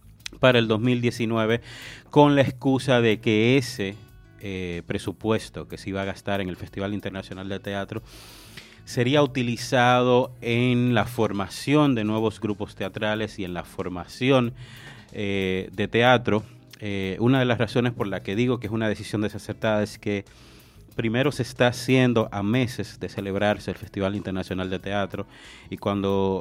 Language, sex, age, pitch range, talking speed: English, male, 30-49, 95-115 Hz, 155 wpm